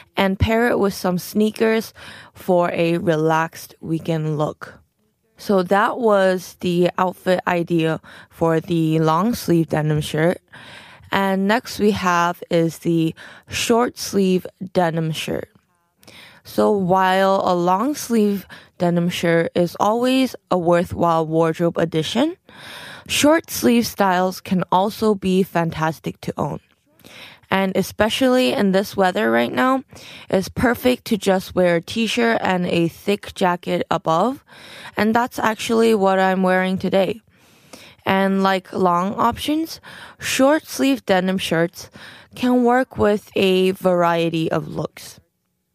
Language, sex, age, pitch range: Korean, female, 20-39, 170-215 Hz